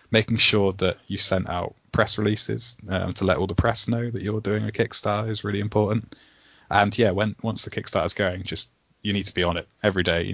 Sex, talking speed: male, 230 wpm